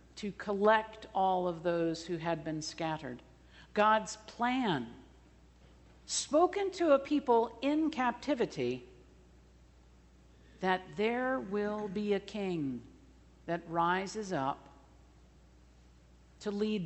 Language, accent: English, American